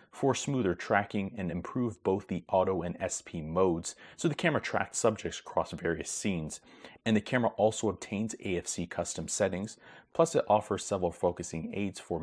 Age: 30-49